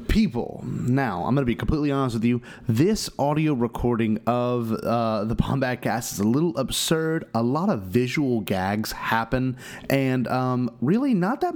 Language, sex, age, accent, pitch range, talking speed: English, male, 30-49, American, 115-150 Hz, 170 wpm